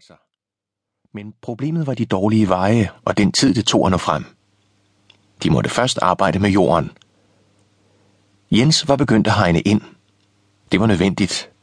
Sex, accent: male, native